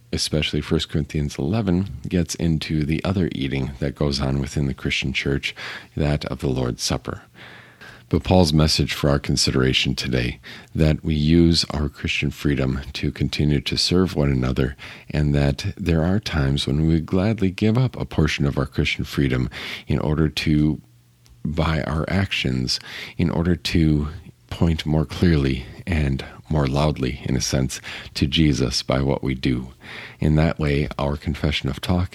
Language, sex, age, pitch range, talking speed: English, male, 50-69, 70-85 Hz, 160 wpm